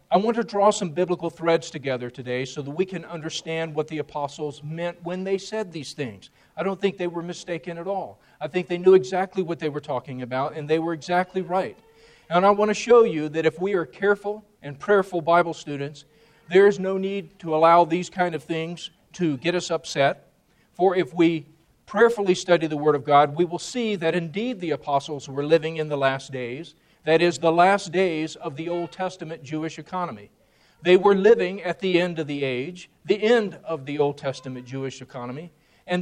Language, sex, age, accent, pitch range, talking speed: English, male, 40-59, American, 155-195 Hz, 210 wpm